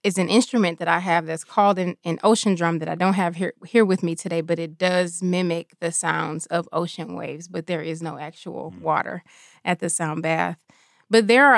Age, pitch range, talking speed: 20-39, 165-195 Hz, 225 wpm